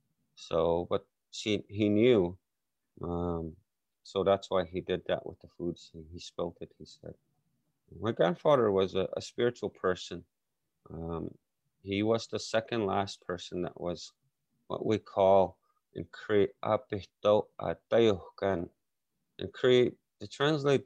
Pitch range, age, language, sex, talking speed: 90-110 Hz, 30-49, English, male, 130 wpm